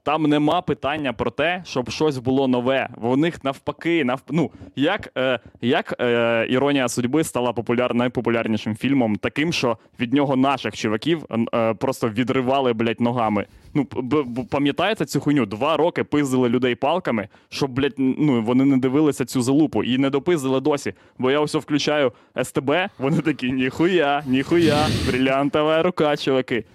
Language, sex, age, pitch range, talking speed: Ukrainian, male, 20-39, 120-150 Hz, 150 wpm